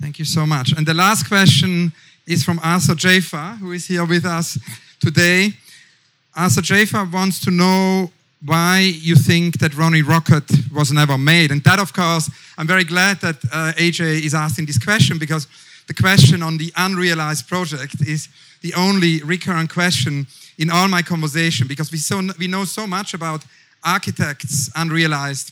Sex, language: male, English